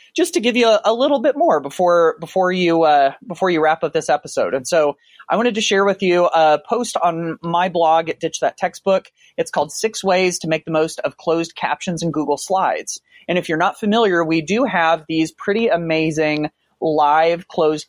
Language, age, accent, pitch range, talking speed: English, 30-49, American, 150-180 Hz, 210 wpm